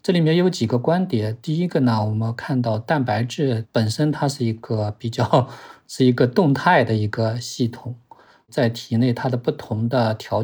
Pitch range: 115-130 Hz